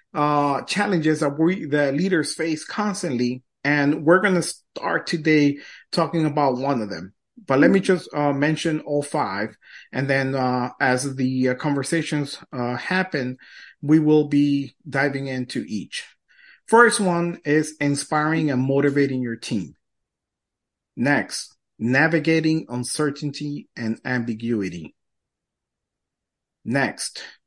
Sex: male